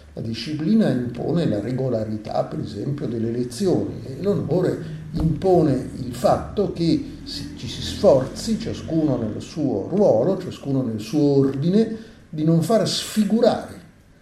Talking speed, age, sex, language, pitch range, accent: 125 wpm, 50-69, male, Italian, 130-165 Hz, native